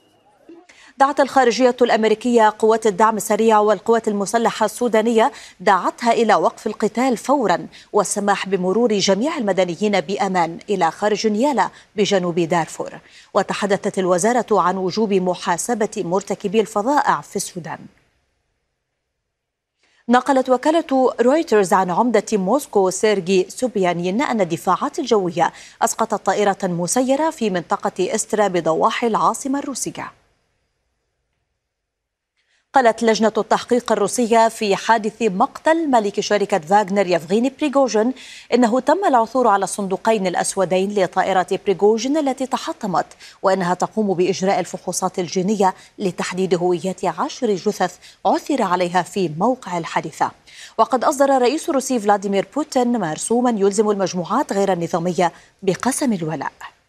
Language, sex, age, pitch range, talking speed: Arabic, female, 30-49, 190-240 Hz, 110 wpm